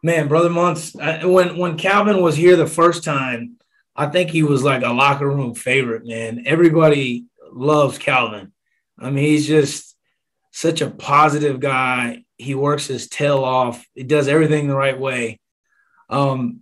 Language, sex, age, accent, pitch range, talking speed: English, male, 20-39, American, 130-155 Hz, 160 wpm